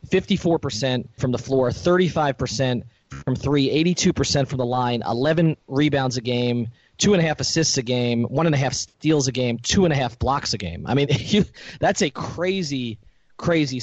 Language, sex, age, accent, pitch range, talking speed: English, male, 30-49, American, 120-155 Hz, 195 wpm